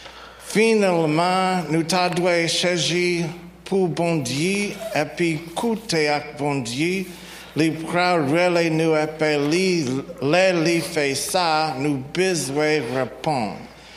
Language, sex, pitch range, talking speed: English, male, 145-175 Hz, 110 wpm